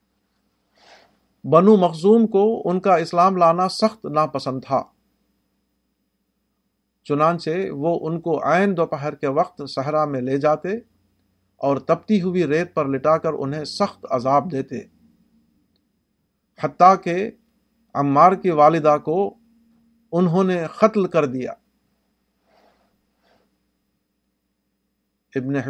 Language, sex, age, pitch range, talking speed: Urdu, male, 50-69, 135-180 Hz, 105 wpm